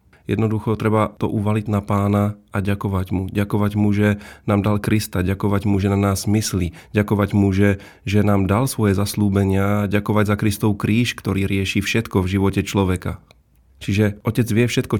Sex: male